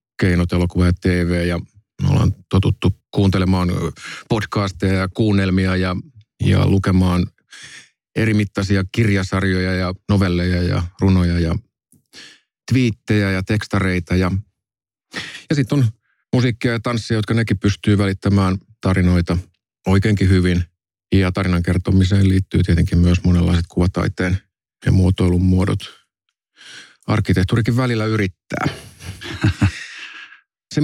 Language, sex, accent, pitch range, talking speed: Finnish, male, native, 90-105 Hz, 105 wpm